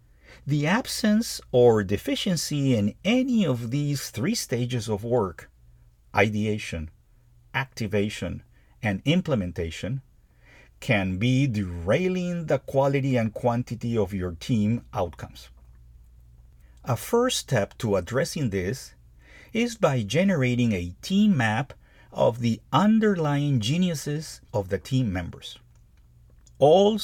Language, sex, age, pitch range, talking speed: English, male, 50-69, 95-155 Hz, 105 wpm